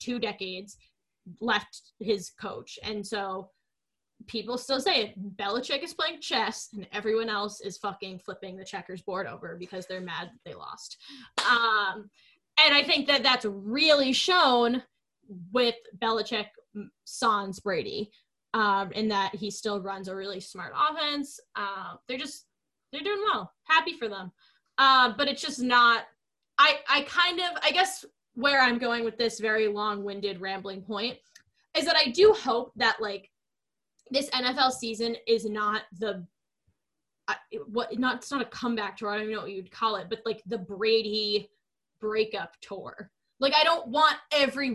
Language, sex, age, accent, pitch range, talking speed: English, female, 10-29, American, 210-280 Hz, 160 wpm